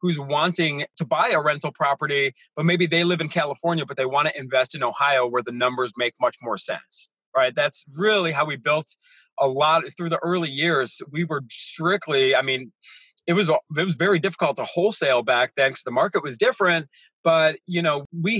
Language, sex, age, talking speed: English, male, 30-49, 210 wpm